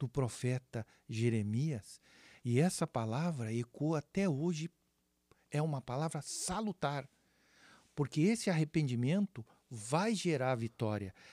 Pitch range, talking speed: 135-180 Hz, 100 wpm